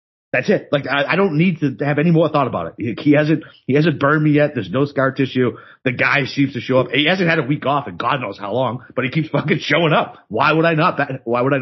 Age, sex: 30-49, male